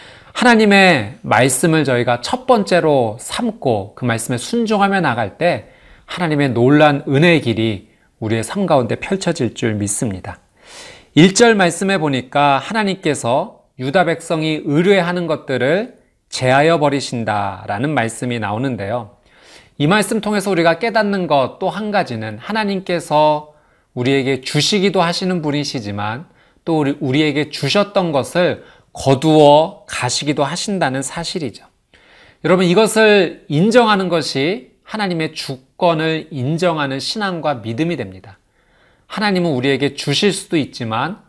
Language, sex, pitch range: Korean, male, 130-185 Hz